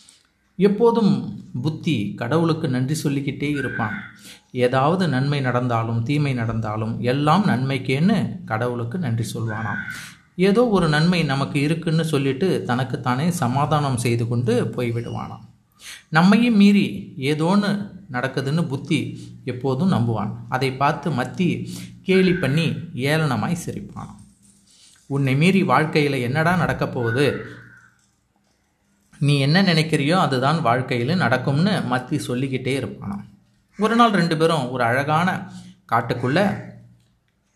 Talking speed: 100 wpm